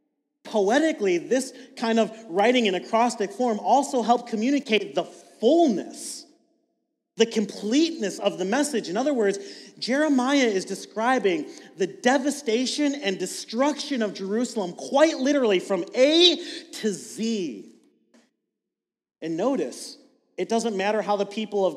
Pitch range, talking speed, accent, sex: 190-250 Hz, 125 wpm, American, male